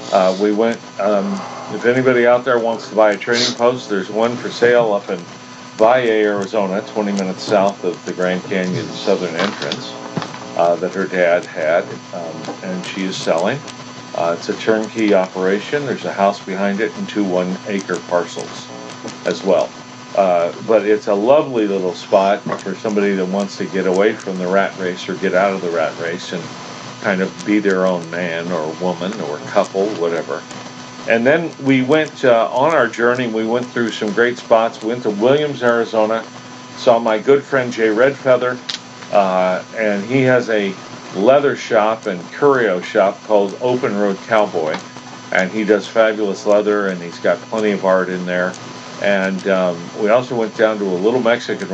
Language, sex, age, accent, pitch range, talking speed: English, male, 50-69, American, 95-115 Hz, 180 wpm